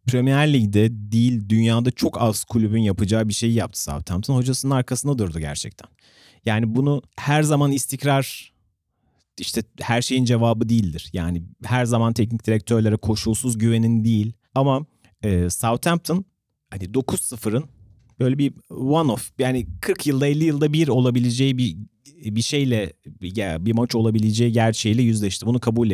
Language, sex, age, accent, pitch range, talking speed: Turkish, male, 40-59, native, 105-135 Hz, 135 wpm